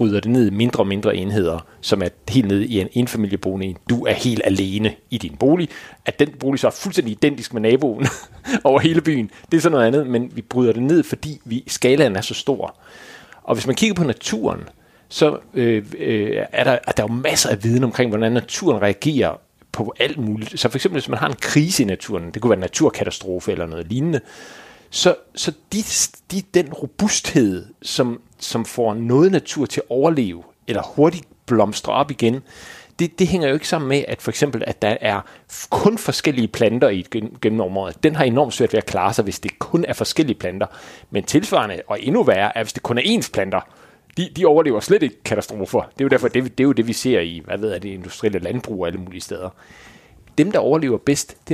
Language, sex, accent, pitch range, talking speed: Danish, male, native, 105-150 Hz, 215 wpm